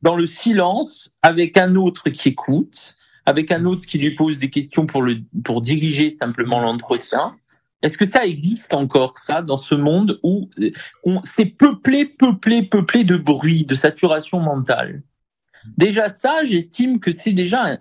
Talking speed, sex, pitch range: 165 wpm, male, 150-215 Hz